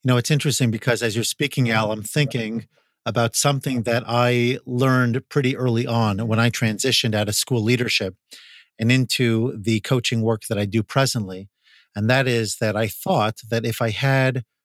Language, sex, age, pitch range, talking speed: English, male, 50-69, 110-130 Hz, 185 wpm